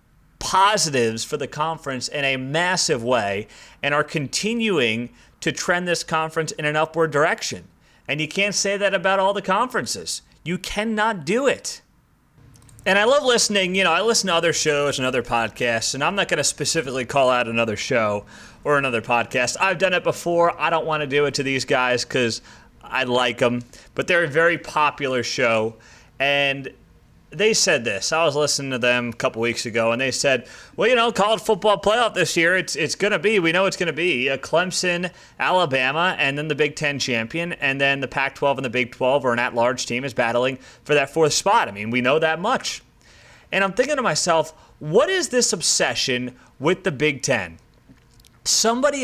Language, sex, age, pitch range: English, male, 30-49, 125-180 Hz